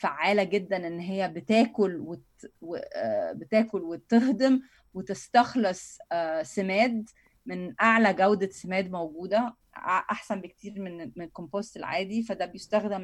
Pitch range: 185-225 Hz